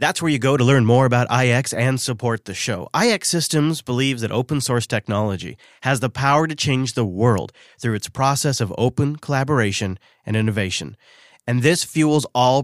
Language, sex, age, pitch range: English, male, 30-49, 115-140 Hz